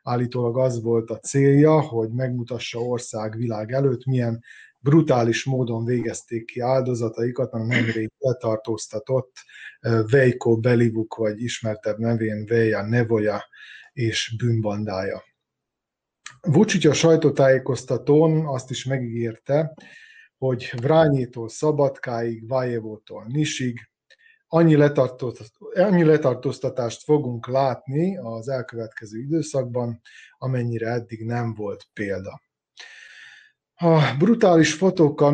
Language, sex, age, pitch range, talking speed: Hungarian, male, 30-49, 115-140 Hz, 90 wpm